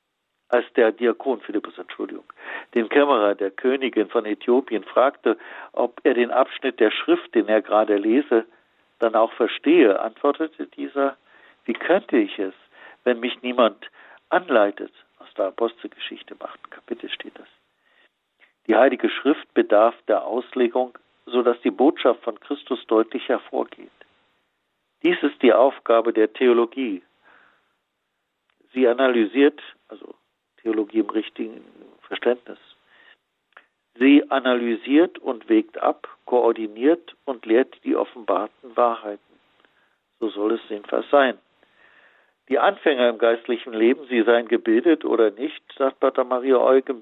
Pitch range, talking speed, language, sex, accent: 110-145 Hz, 125 wpm, German, male, German